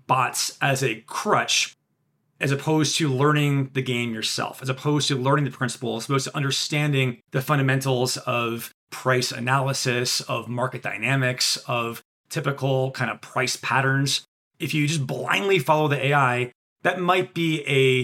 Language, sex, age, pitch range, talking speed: English, male, 30-49, 130-160 Hz, 155 wpm